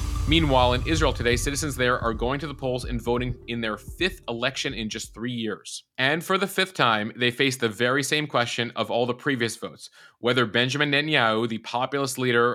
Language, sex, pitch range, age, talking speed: English, male, 115-140 Hz, 30-49, 205 wpm